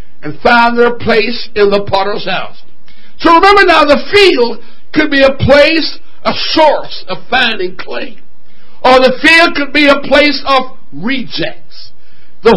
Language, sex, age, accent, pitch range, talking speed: English, male, 60-79, American, 230-310 Hz, 155 wpm